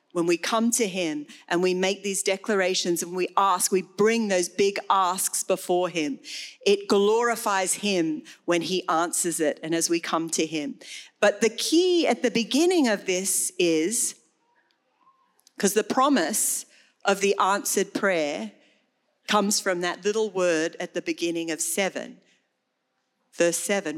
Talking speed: 155 wpm